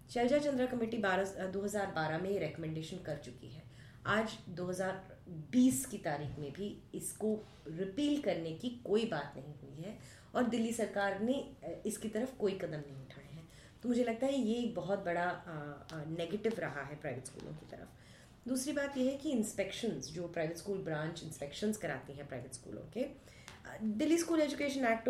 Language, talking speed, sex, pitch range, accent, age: Hindi, 170 wpm, female, 165-240 Hz, native, 30-49